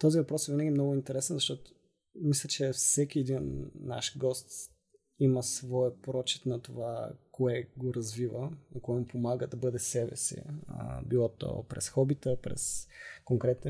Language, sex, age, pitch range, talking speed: Bulgarian, male, 20-39, 120-135 Hz, 155 wpm